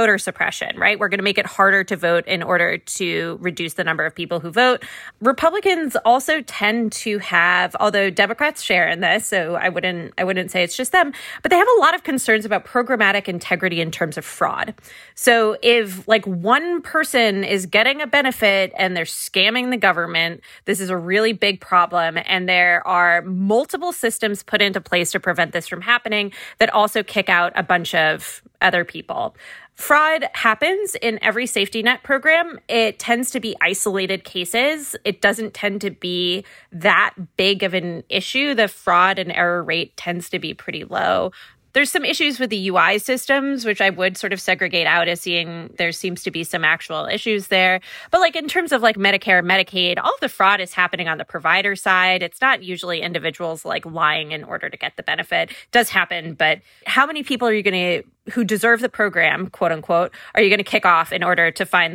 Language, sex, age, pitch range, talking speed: English, female, 20-39, 180-230 Hz, 200 wpm